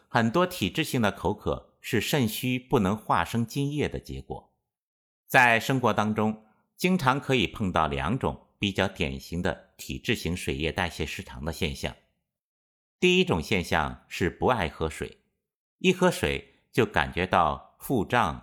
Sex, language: male, Chinese